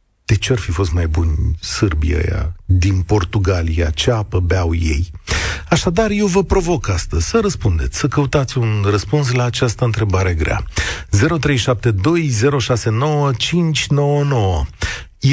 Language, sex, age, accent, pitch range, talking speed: Romanian, male, 40-59, native, 90-135 Hz, 115 wpm